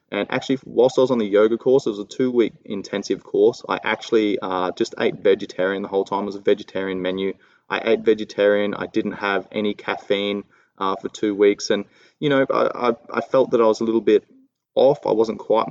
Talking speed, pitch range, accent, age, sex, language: 220 wpm, 95-115 Hz, Australian, 20-39, male, English